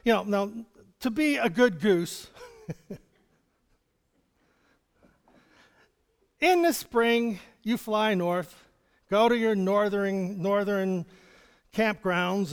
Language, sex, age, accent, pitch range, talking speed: English, male, 50-69, American, 175-245 Hz, 95 wpm